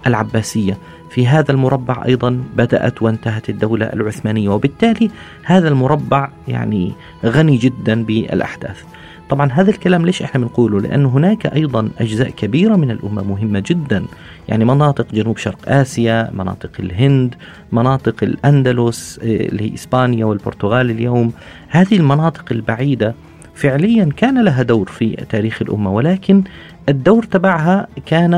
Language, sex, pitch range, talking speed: Arabic, male, 110-155 Hz, 125 wpm